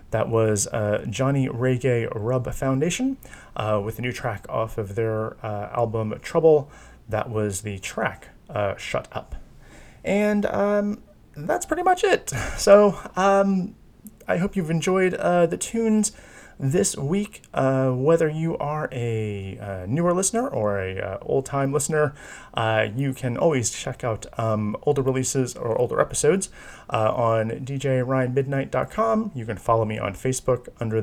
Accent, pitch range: American, 105-135 Hz